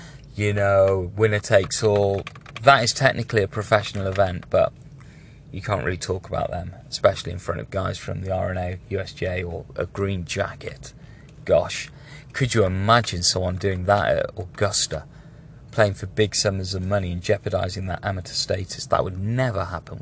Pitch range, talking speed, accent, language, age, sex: 95-135 Hz, 165 wpm, British, English, 30-49, male